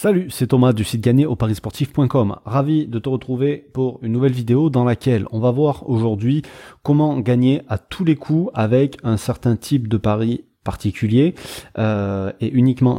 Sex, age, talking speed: male, 30-49, 175 wpm